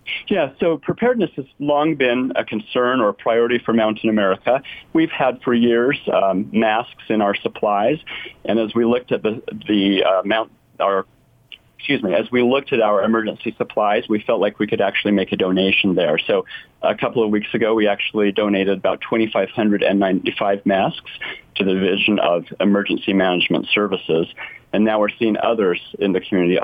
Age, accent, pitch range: 40-59, American, 95-115 Hz